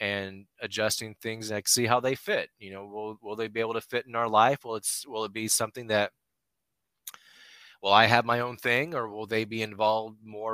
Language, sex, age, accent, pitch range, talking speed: English, male, 30-49, American, 95-110 Hz, 220 wpm